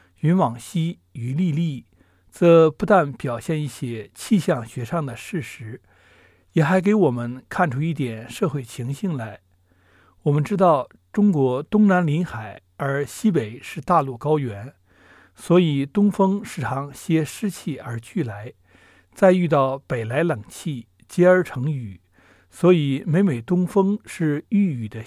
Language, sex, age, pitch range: Chinese, male, 60-79, 115-180 Hz